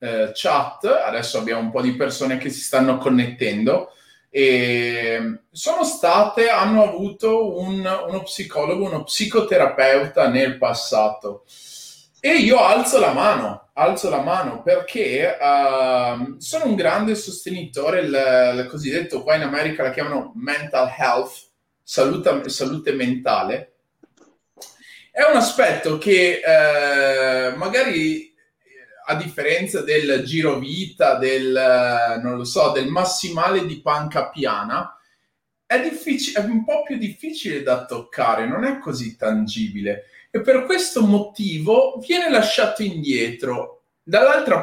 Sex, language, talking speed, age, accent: male, Italian, 125 wpm, 30-49, native